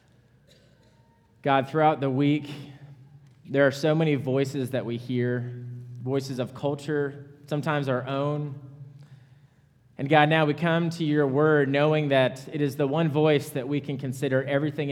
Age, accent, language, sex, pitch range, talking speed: 20-39, American, English, male, 125-145 Hz, 155 wpm